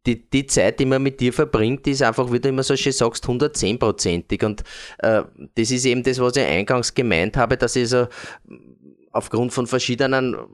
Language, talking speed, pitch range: German, 195 wpm, 115-135 Hz